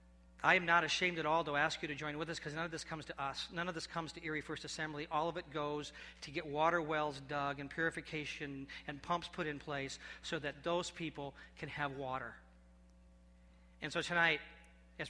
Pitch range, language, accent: 145-170 Hz, English, American